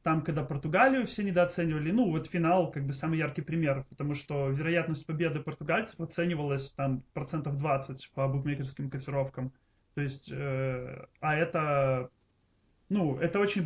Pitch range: 135-170 Hz